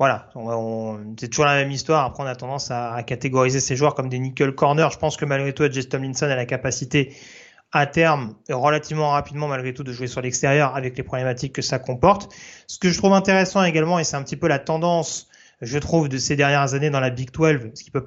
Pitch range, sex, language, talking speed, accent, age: 130-155 Hz, male, French, 240 wpm, French, 30-49